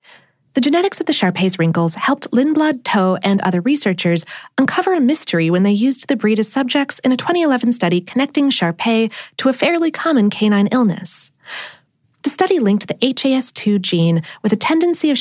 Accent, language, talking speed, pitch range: American, English, 175 wpm, 185-285 Hz